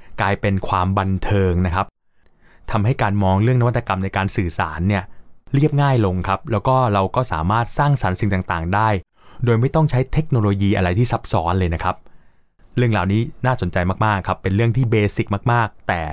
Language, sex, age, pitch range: Thai, male, 20-39, 95-120 Hz